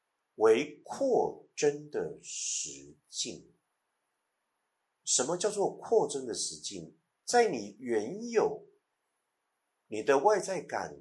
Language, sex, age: Chinese, male, 50-69